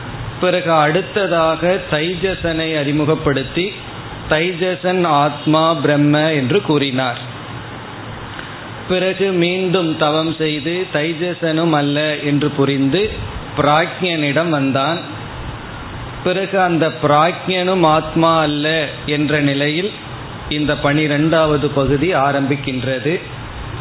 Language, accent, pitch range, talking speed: Tamil, native, 135-170 Hz, 75 wpm